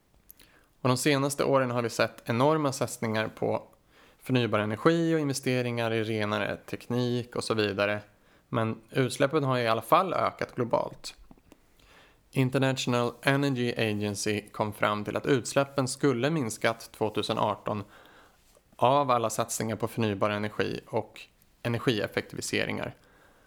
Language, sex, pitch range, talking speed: Swedish, male, 110-135 Hz, 120 wpm